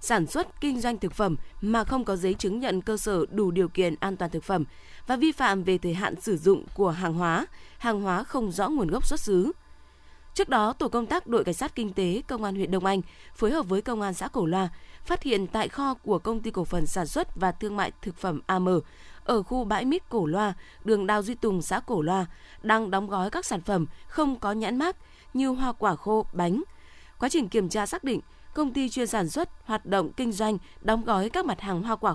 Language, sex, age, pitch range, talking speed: Vietnamese, female, 20-39, 185-240 Hz, 245 wpm